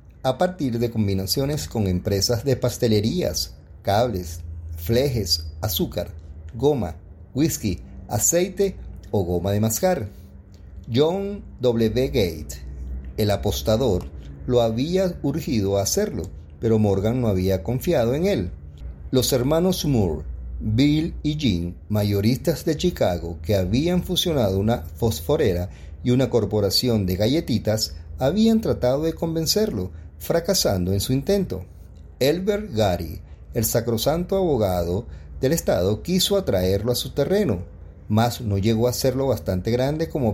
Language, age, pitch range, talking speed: Spanish, 40-59, 90-135 Hz, 120 wpm